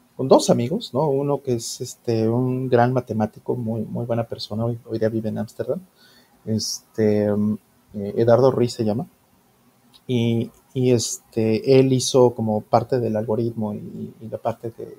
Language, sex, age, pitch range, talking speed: Spanish, male, 30-49, 115-140 Hz, 160 wpm